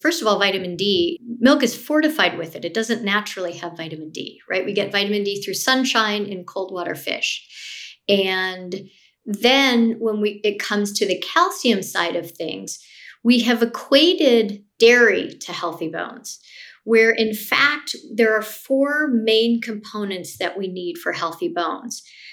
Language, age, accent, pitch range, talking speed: English, 40-59, American, 185-240 Hz, 160 wpm